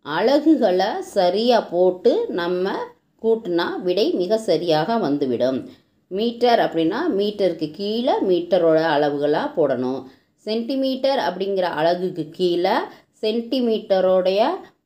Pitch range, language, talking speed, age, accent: 170-245 Hz, Tamil, 85 wpm, 20-39, native